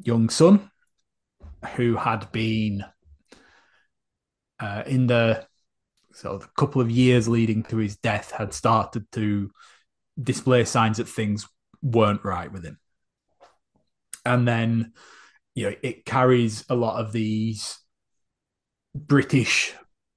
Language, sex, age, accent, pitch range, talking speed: English, male, 20-39, British, 105-120 Hz, 115 wpm